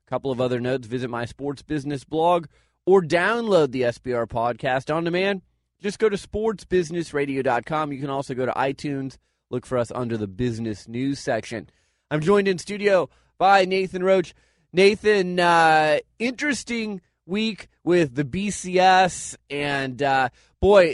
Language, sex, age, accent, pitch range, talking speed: English, male, 30-49, American, 140-195 Hz, 150 wpm